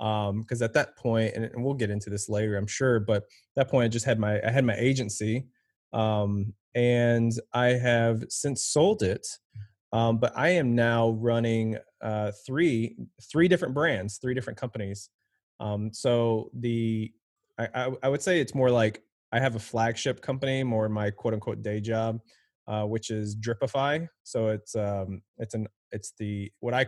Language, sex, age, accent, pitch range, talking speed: English, male, 20-39, American, 110-125 Hz, 180 wpm